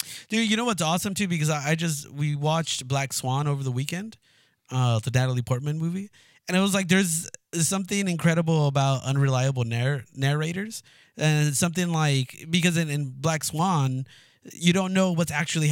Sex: male